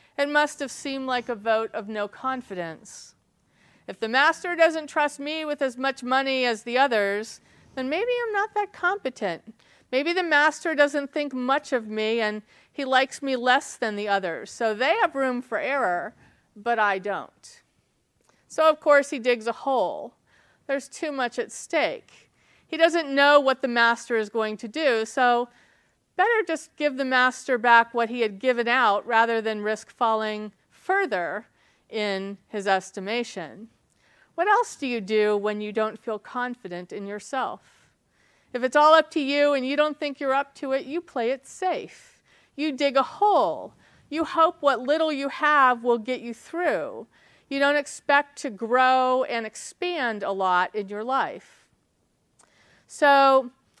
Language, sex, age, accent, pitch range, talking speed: English, female, 40-59, American, 225-290 Hz, 170 wpm